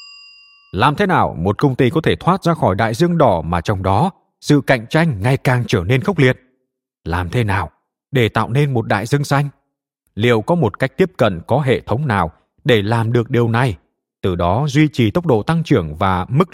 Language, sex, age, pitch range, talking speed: Vietnamese, male, 20-39, 100-145 Hz, 220 wpm